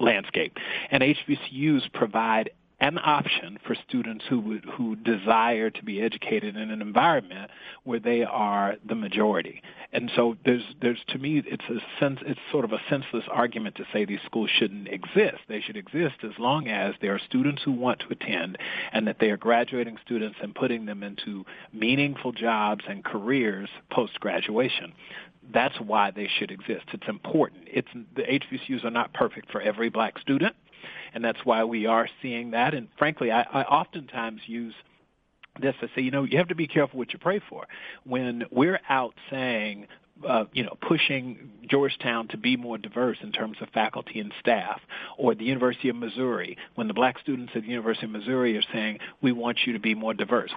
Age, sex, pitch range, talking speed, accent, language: 40-59, male, 110-130 Hz, 185 wpm, American, English